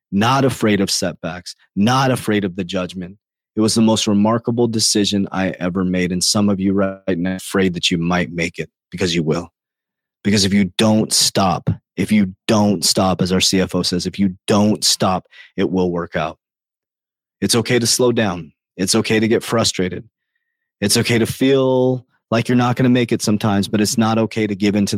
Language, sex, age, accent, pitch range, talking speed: English, male, 30-49, American, 95-120 Hz, 200 wpm